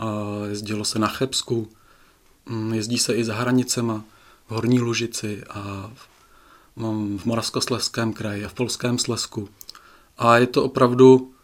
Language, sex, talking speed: Czech, male, 135 wpm